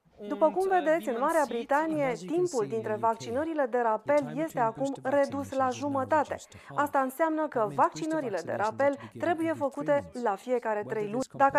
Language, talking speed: Romanian, 150 wpm